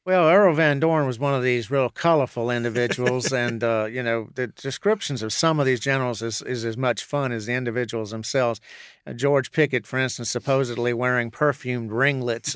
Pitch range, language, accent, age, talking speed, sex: 120-140 Hz, English, American, 50-69, 185 wpm, male